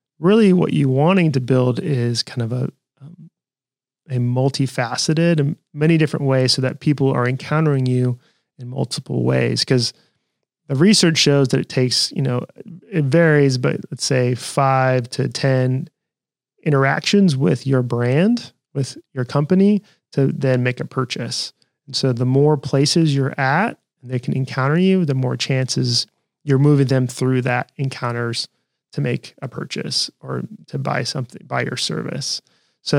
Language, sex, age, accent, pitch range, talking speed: English, male, 30-49, American, 130-150 Hz, 160 wpm